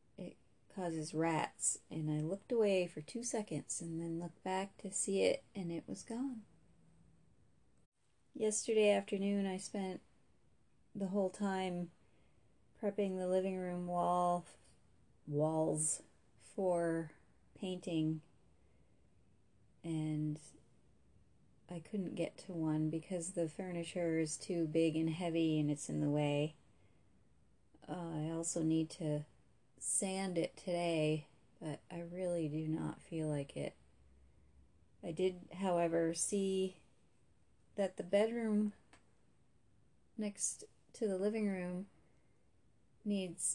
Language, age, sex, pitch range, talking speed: English, 30-49, female, 160-195 Hz, 115 wpm